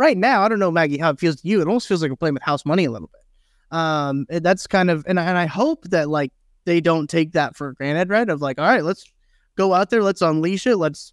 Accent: American